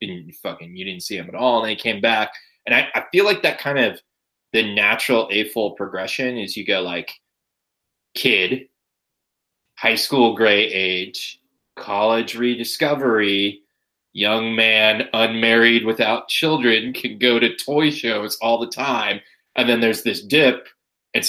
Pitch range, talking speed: 105-150 Hz, 160 wpm